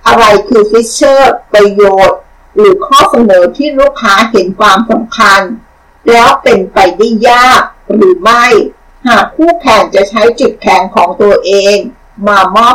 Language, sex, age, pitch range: Thai, female, 60-79, 200-260 Hz